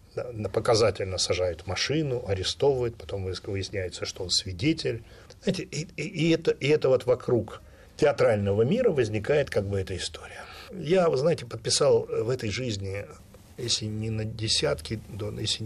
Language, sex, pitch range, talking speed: Russian, male, 95-130 Hz, 125 wpm